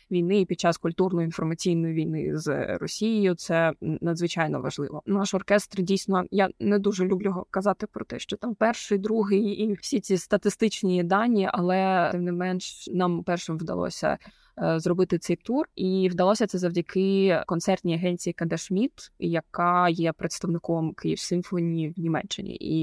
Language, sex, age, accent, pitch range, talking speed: Ukrainian, female, 20-39, native, 165-190 Hz, 140 wpm